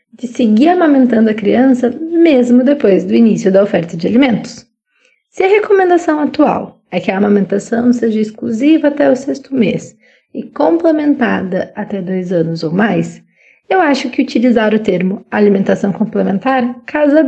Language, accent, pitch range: Portuguese, Brazilian, 200-265 Hz